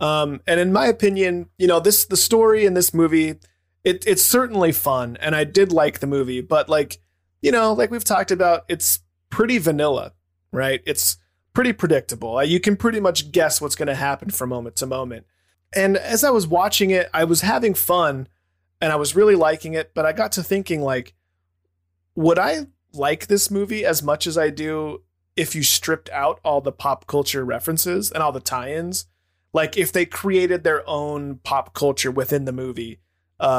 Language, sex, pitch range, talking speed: English, male, 125-180 Hz, 195 wpm